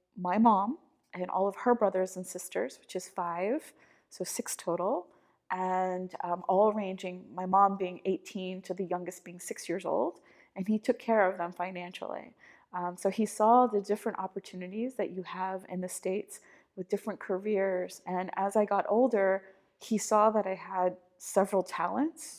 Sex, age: female, 30-49